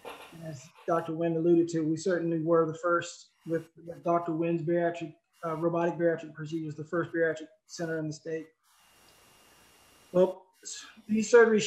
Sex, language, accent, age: male, English, American, 20-39